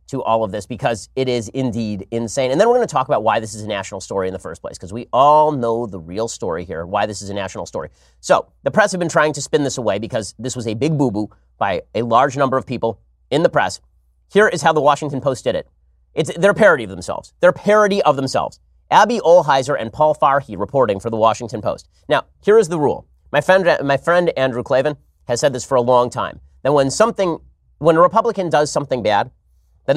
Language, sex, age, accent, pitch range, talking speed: English, male, 30-49, American, 100-155 Hz, 240 wpm